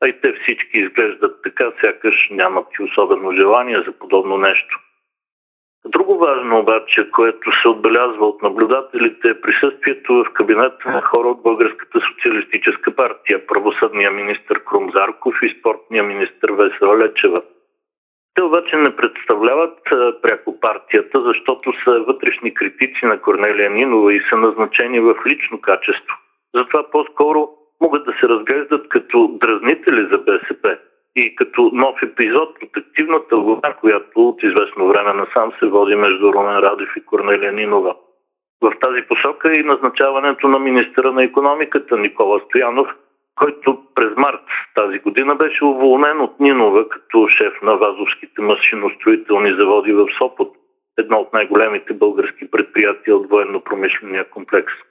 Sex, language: male, Bulgarian